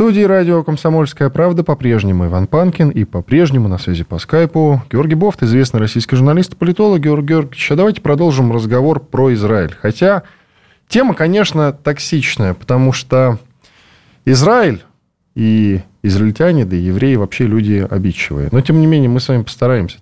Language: Russian